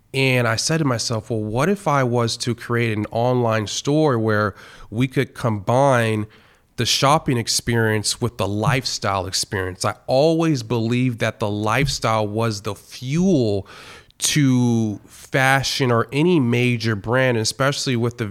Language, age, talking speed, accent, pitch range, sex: English, 30-49, 145 wpm, American, 110-130 Hz, male